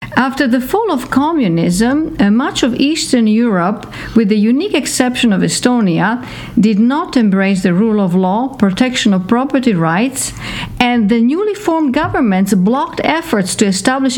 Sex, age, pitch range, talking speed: female, 50-69, 220-275 Hz, 150 wpm